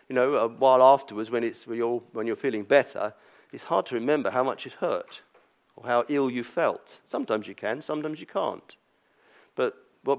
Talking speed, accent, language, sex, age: 200 wpm, British, English, male, 50-69